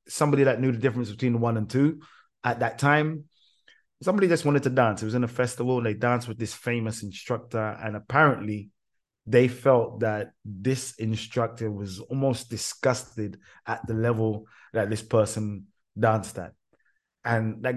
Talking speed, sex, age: 165 wpm, male, 20-39